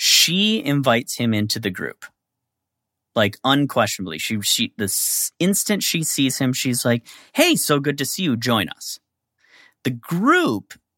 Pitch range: 95-125 Hz